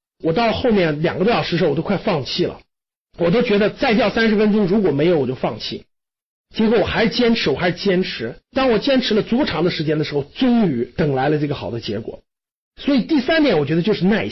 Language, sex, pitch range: Chinese, male, 170-255 Hz